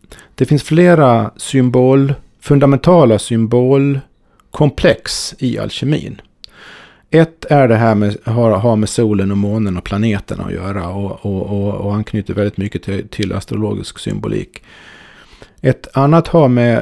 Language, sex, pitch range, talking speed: Swedish, male, 105-135 Hz, 135 wpm